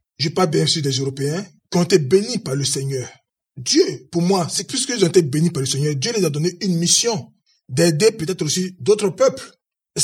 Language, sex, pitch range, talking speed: French, male, 155-190 Hz, 220 wpm